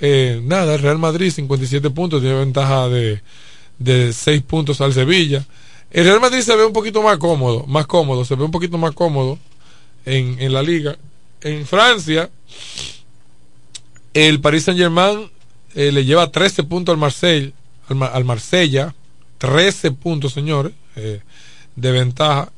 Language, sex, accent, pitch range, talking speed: Spanish, male, American, 130-175 Hz, 155 wpm